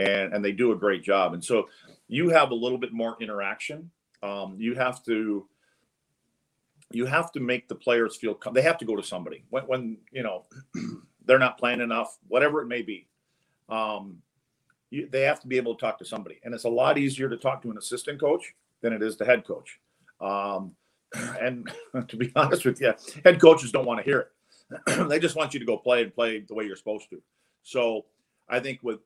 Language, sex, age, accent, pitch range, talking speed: English, male, 40-59, American, 110-130 Hz, 220 wpm